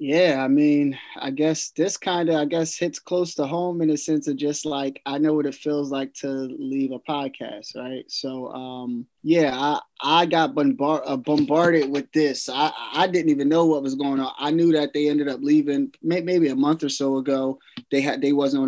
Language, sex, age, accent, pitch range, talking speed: English, male, 20-39, American, 135-165 Hz, 220 wpm